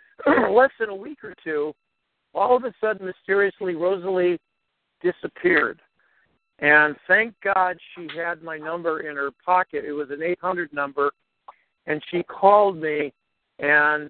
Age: 60-79